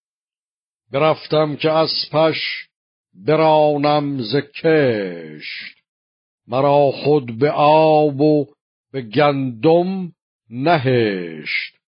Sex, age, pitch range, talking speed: male, 60-79, 120-145 Hz, 70 wpm